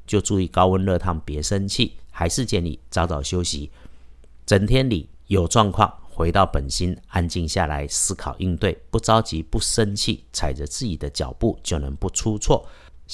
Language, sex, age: Chinese, male, 50-69